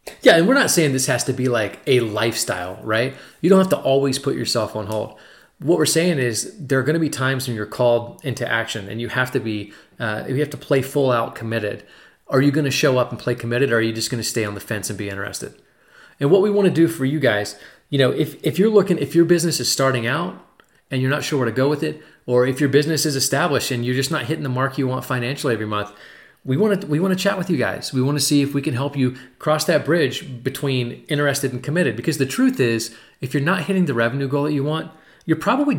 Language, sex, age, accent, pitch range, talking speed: English, male, 30-49, American, 120-155 Hz, 265 wpm